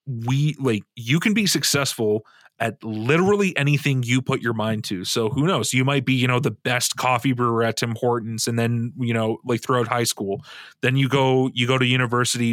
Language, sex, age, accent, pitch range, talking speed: English, male, 30-49, American, 110-135 Hz, 210 wpm